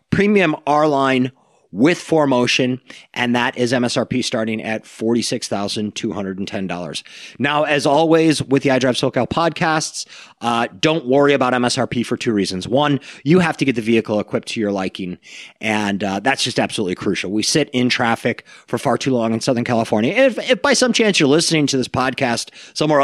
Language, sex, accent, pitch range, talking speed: English, male, American, 110-155 Hz, 180 wpm